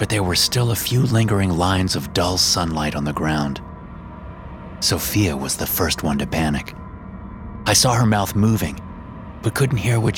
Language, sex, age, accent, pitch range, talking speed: English, male, 30-49, American, 75-105 Hz, 175 wpm